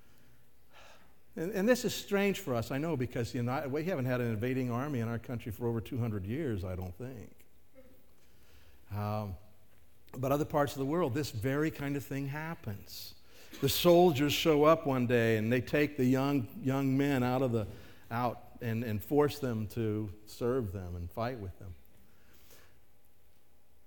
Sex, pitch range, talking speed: male, 105-140 Hz, 175 wpm